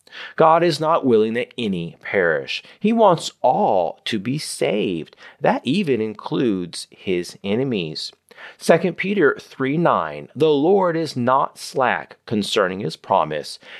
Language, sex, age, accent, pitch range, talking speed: English, male, 40-59, American, 135-210 Hz, 130 wpm